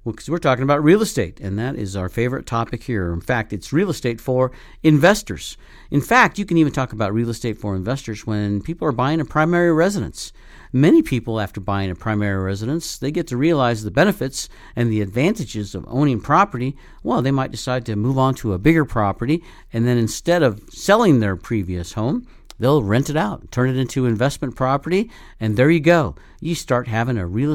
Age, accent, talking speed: 50-69, American, 205 wpm